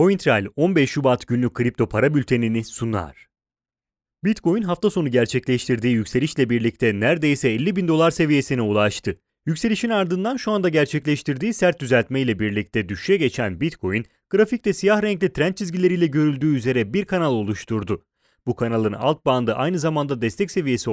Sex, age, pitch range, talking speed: male, 30-49, 120-180 Hz, 140 wpm